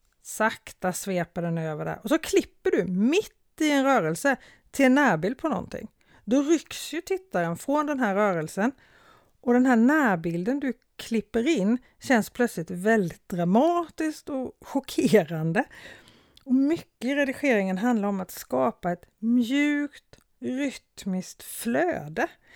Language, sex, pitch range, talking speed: Swedish, female, 185-280 Hz, 135 wpm